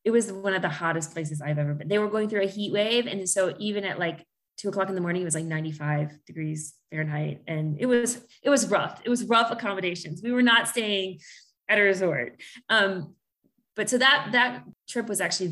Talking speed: 225 wpm